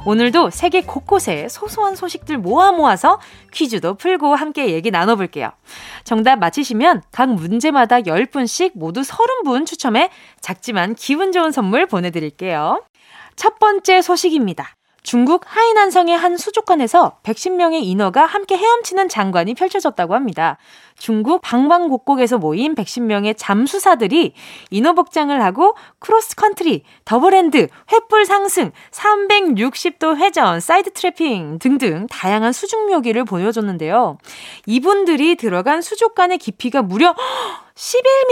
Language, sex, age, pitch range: Korean, female, 20-39, 215-360 Hz